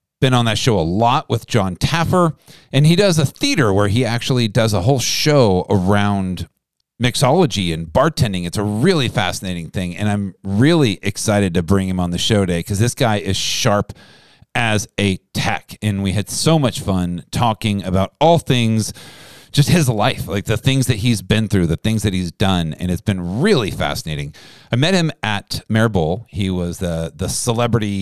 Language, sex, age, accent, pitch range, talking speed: English, male, 40-59, American, 90-130 Hz, 190 wpm